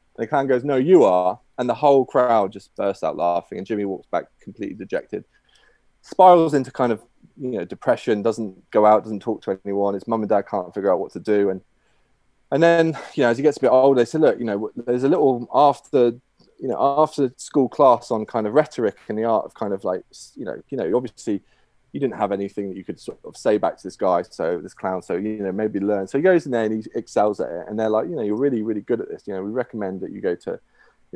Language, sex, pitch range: English, male, 105-135 Hz